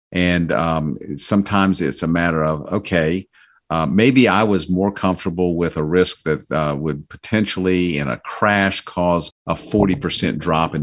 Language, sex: English, male